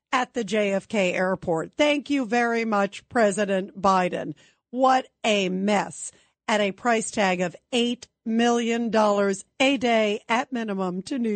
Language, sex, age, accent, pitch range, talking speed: English, female, 50-69, American, 205-245 Hz, 135 wpm